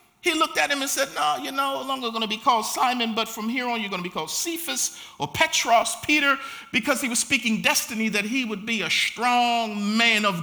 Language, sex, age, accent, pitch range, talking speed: English, male, 50-69, American, 185-265 Hz, 225 wpm